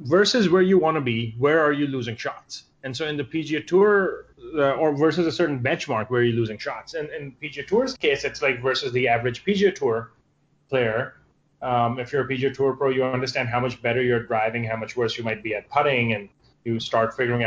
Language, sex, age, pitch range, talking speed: English, male, 30-49, 115-140 Hz, 230 wpm